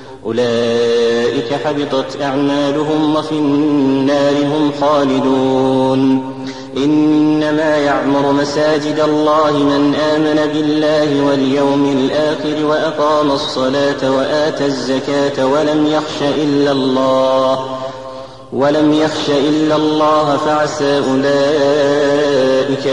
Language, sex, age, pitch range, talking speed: Arabic, male, 30-49, 130-150 Hz, 80 wpm